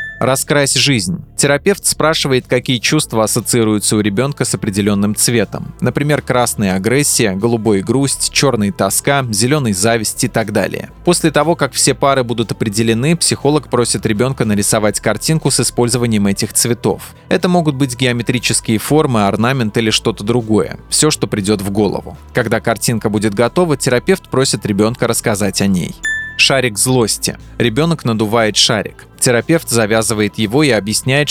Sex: male